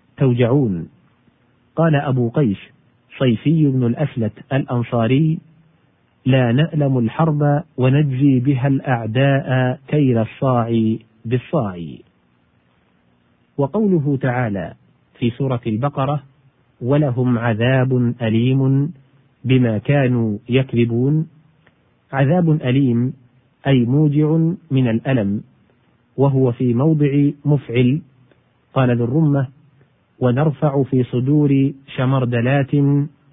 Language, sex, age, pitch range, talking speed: Arabic, male, 40-59, 120-145 Hz, 80 wpm